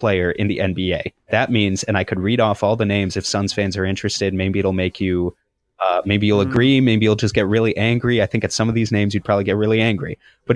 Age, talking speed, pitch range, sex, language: 20-39, 260 wpm, 95-115 Hz, male, English